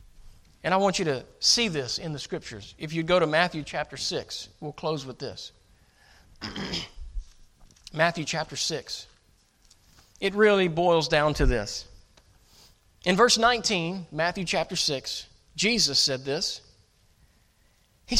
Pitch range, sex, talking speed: 140-185 Hz, male, 130 wpm